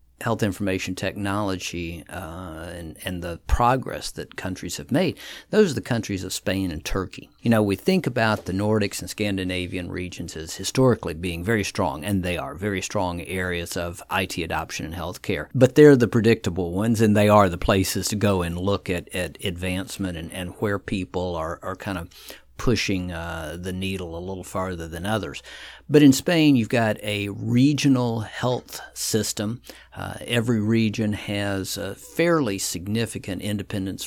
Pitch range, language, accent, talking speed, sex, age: 90-105 Hz, English, American, 175 wpm, male, 50-69